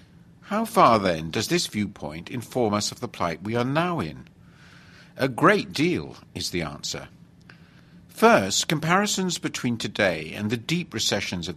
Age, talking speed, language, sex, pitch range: 50-69, 155 wpm, English, male, 100-160 Hz